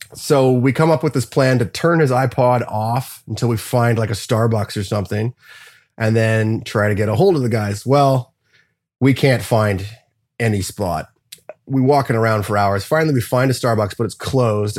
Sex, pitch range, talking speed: male, 110-140 Hz, 205 wpm